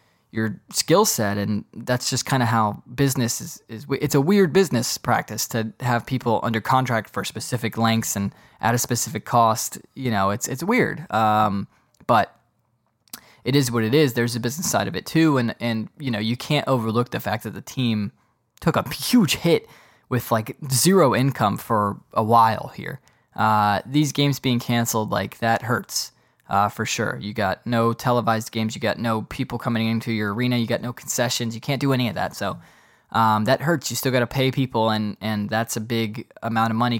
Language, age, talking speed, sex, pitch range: English, 20-39, 205 wpm, male, 110-130 Hz